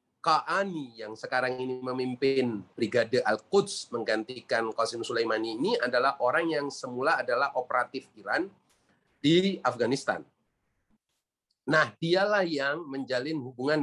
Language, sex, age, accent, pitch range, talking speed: Indonesian, male, 30-49, native, 130-180 Hz, 115 wpm